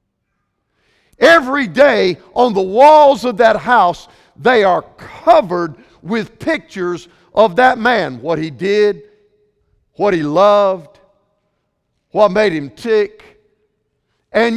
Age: 50-69